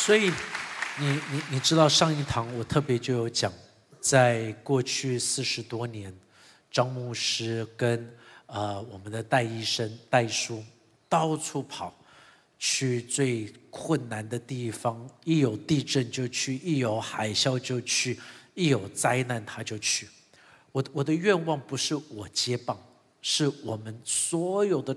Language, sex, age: Chinese, male, 50-69